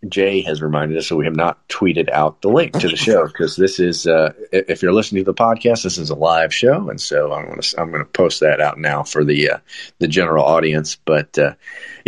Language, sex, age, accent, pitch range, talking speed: English, male, 40-59, American, 75-90 Hz, 255 wpm